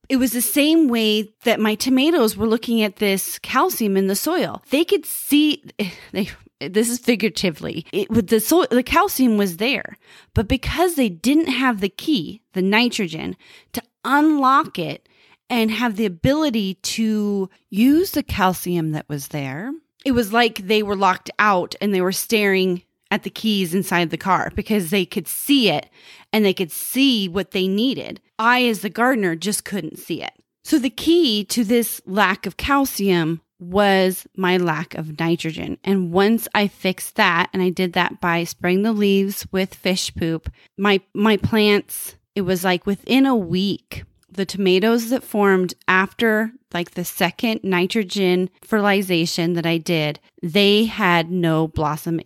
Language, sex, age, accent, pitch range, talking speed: English, female, 30-49, American, 185-235 Hz, 170 wpm